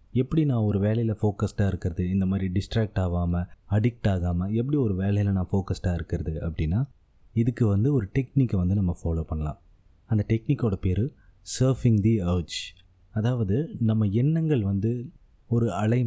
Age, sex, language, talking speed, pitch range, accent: 30-49, male, Tamil, 145 wpm, 90-120 Hz, native